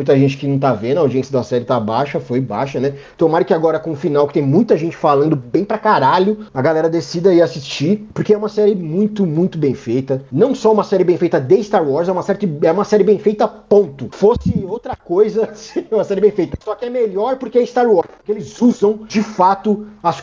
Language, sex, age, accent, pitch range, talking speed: Portuguese, male, 30-49, Brazilian, 140-205 Hz, 245 wpm